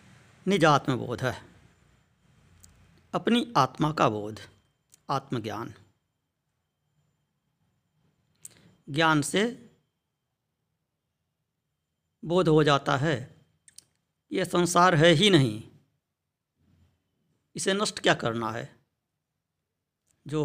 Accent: native